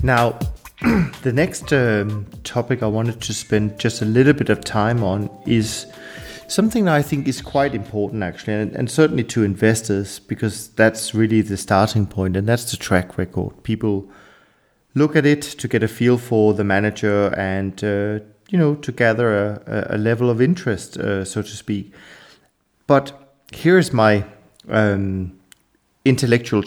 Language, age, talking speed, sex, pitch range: English, 30-49, 165 wpm, male, 100-120 Hz